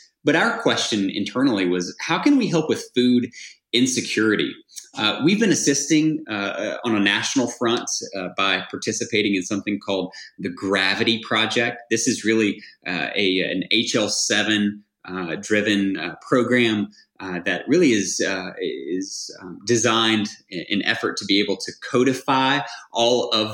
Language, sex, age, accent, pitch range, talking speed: English, male, 20-39, American, 95-125 Hz, 150 wpm